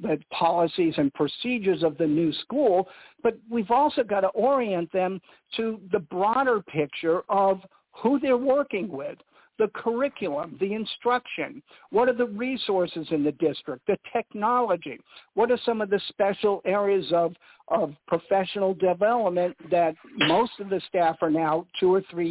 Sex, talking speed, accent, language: male, 155 wpm, American, English